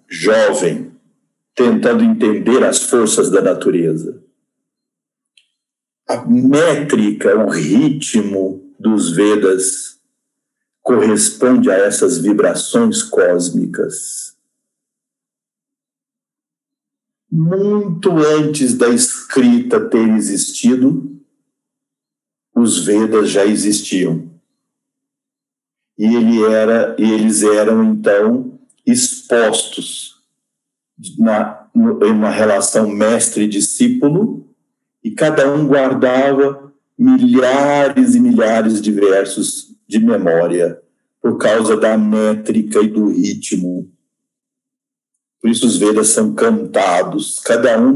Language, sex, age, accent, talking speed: Portuguese, male, 50-69, Brazilian, 80 wpm